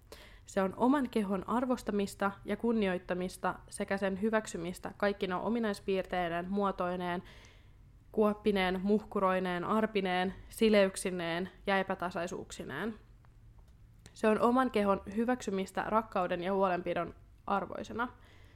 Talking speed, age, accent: 90 wpm, 20-39, native